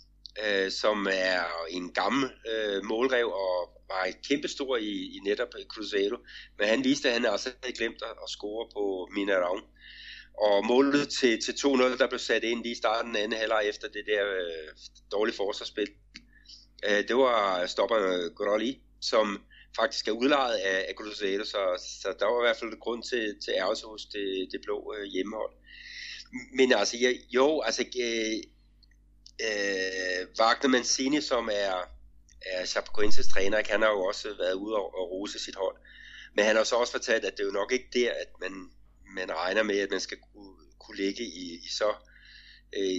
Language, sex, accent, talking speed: Danish, male, native, 180 wpm